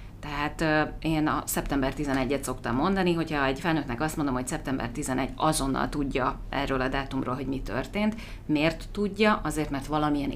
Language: Hungarian